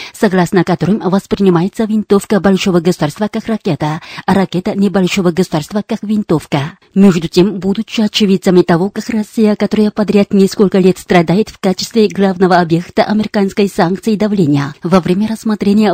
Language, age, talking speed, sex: Russian, 30-49, 140 wpm, female